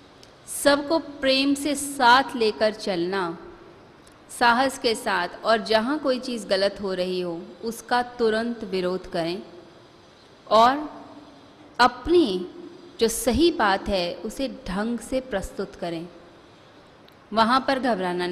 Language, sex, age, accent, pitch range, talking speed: Hindi, female, 30-49, native, 195-265 Hz, 115 wpm